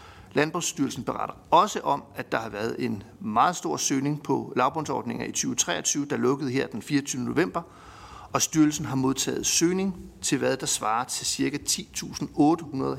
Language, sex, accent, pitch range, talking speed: Danish, male, native, 125-160 Hz, 155 wpm